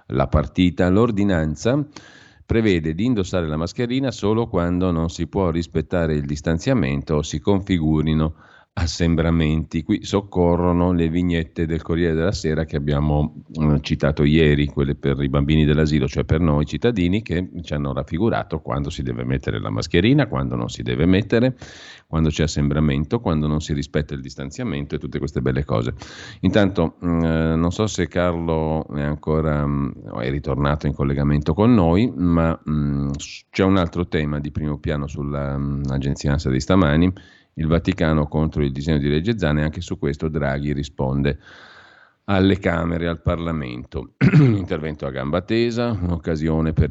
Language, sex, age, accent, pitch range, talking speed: Italian, male, 50-69, native, 70-90 Hz, 155 wpm